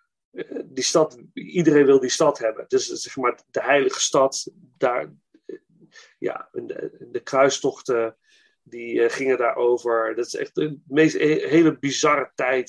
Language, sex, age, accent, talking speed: Dutch, male, 40-59, Dutch, 140 wpm